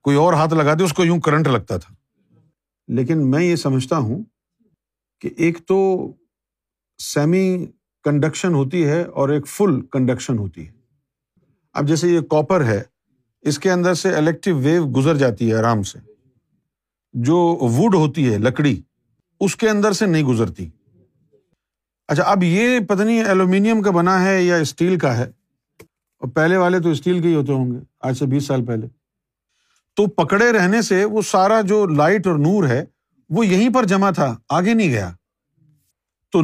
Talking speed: 170 wpm